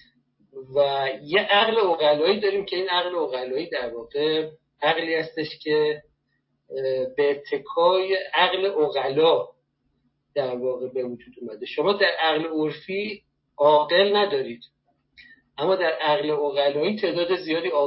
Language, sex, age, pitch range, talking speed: Persian, male, 50-69, 140-195 Hz, 120 wpm